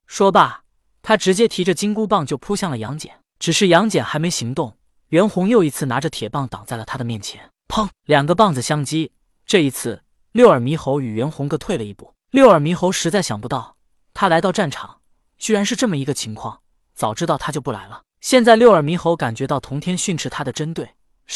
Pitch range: 130-185 Hz